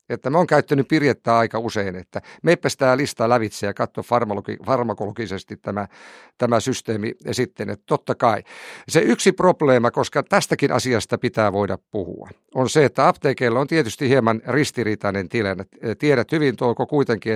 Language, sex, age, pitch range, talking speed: Finnish, male, 50-69, 110-140 Hz, 155 wpm